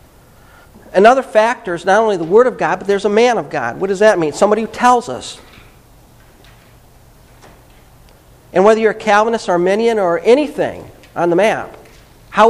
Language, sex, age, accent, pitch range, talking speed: English, male, 50-69, American, 175-215 Hz, 170 wpm